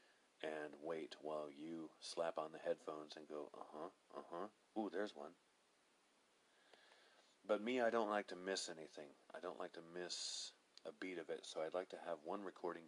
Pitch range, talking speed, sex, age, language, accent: 75-90 Hz, 185 wpm, male, 40-59, English, American